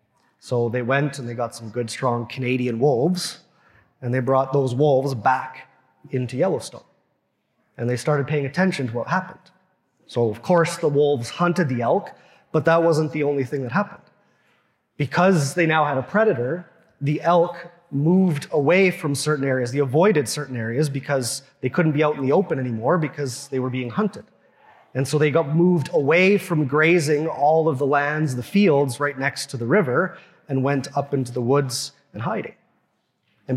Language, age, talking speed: English, 30-49, 180 wpm